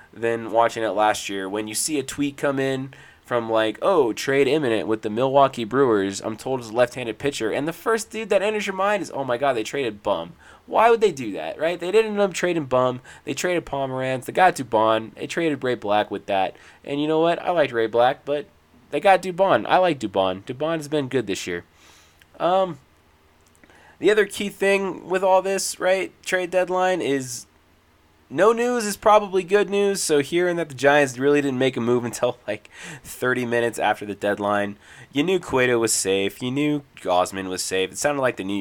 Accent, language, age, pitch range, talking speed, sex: American, English, 20-39, 100-165 Hz, 215 wpm, male